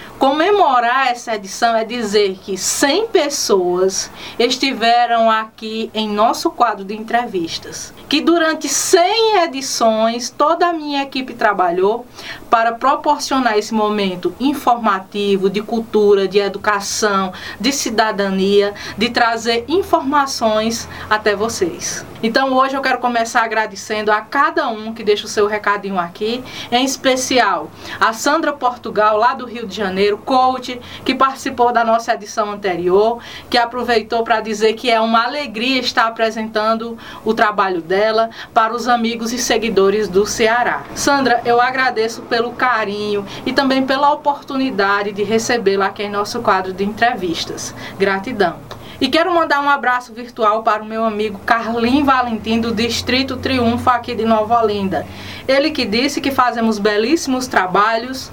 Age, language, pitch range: 20-39, Portuguese, 215-260 Hz